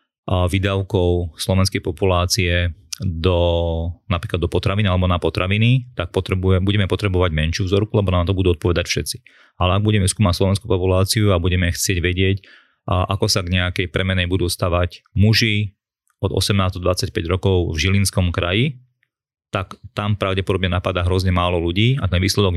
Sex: male